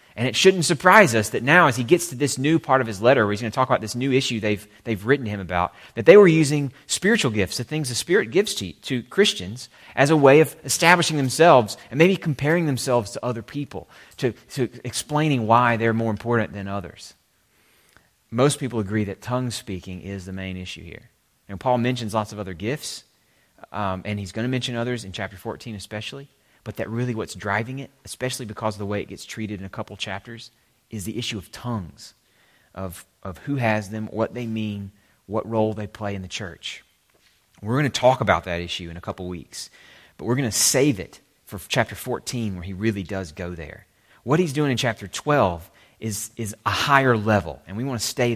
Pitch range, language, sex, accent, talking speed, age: 100-130 Hz, English, male, American, 220 wpm, 30-49